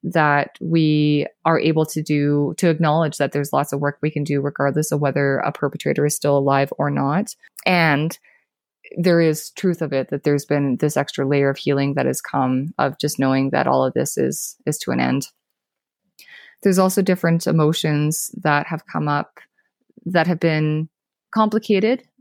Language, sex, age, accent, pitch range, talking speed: English, female, 20-39, American, 150-190 Hz, 180 wpm